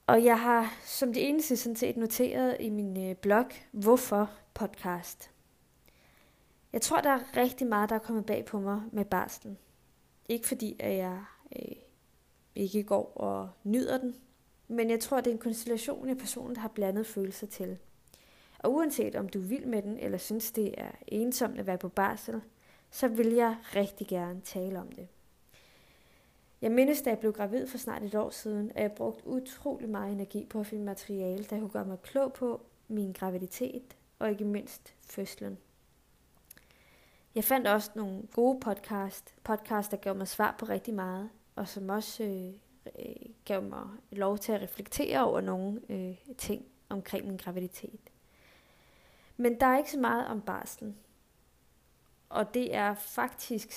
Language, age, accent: Danish, 20-39, native